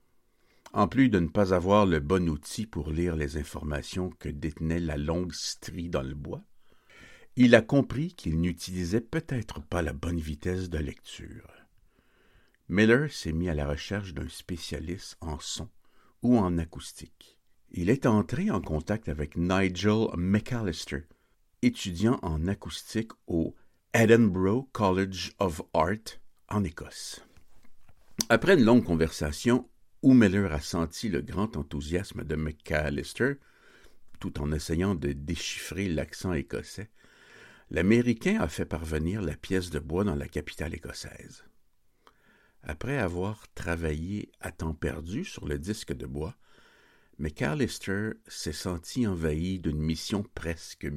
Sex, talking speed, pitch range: male, 135 wpm, 80-105 Hz